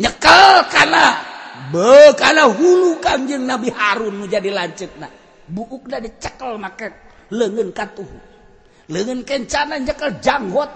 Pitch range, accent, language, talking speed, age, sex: 205-270 Hz, native, Indonesian, 100 wpm, 40-59, male